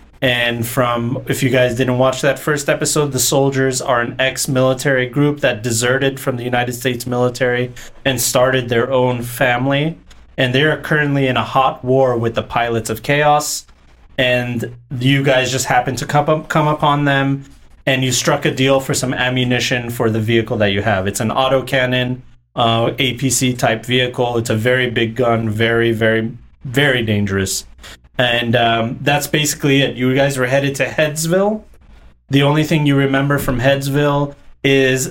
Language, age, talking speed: English, 30-49, 175 wpm